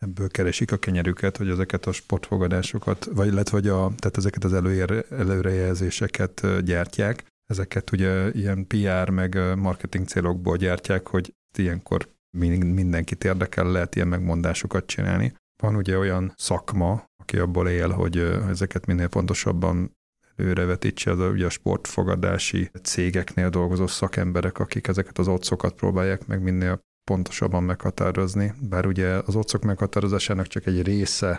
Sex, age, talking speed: male, 30-49, 130 wpm